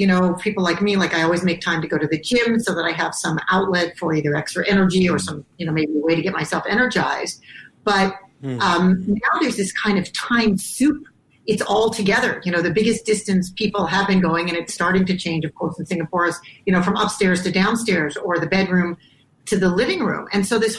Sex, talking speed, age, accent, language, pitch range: female, 240 wpm, 40-59, American, English, 165-205 Hz